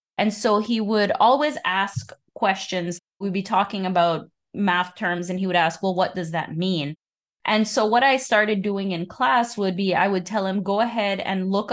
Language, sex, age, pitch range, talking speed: English, female, 20-39, 180-220 Hz, 205 wpm